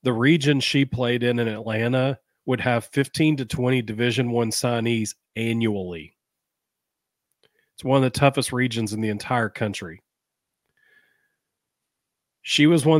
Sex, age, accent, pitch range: male, 40-59, American, 120-150 Hz